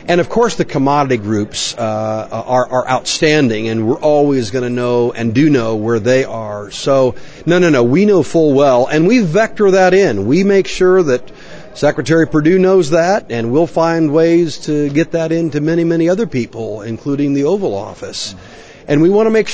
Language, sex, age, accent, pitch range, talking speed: English, male, 50-69, American, 120-170 Hz, 200 wpm